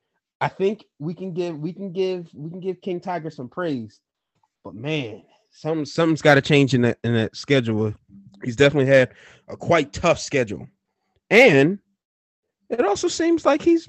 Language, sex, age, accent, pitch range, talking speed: English, male, 30-49, American, 110-165 Hz, 175 wpm